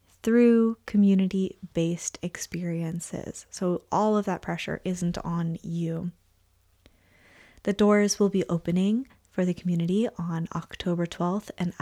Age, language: 20-39, English